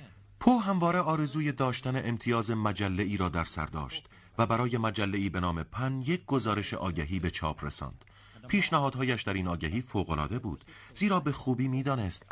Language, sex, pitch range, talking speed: Persian, male, 90-125 Hz, 155 wpm